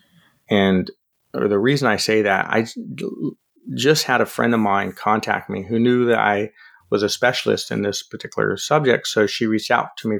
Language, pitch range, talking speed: English, 105-130 Hz, 195 wpm